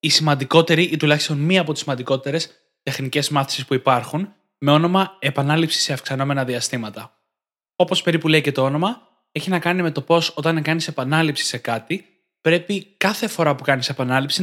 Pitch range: 135-175 Hz